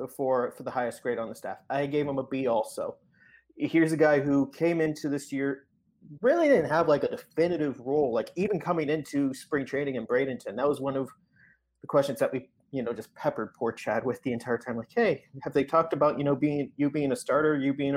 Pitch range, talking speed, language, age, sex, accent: 130-165 Hz, 235 wpm, English, 30-49, male, American